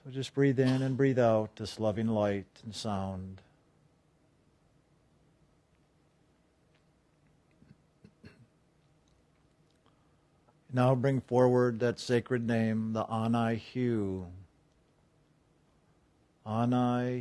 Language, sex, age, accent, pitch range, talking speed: English, male, 50-69, American, 105-135 Hz, 75 wpm